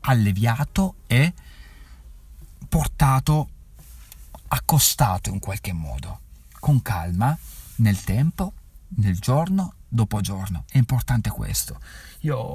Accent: native